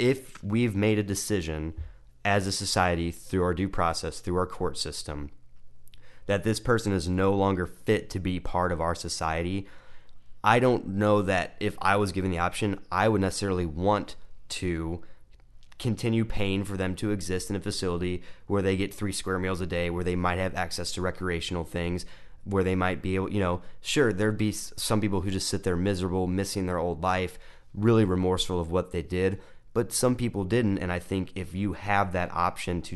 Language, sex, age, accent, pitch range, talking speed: English, male, 30-49, American, 85-100 Hz, 200 wpm